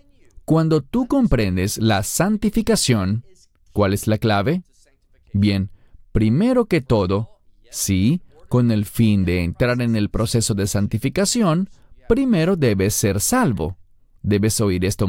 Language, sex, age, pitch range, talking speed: English, male, 40-59, 105-165 Hz, 125 wpm